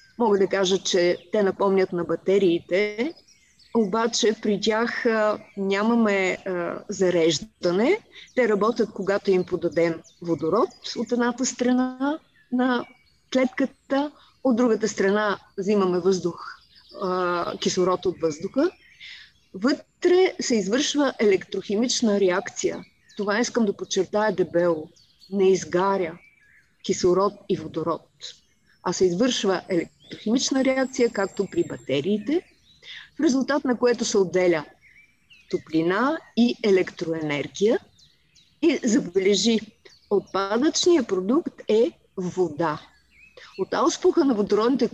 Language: Bulgarian